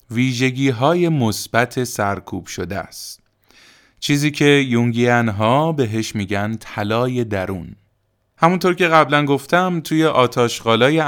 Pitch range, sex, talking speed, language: 110-150 Hz, male, 110 wpm, Persian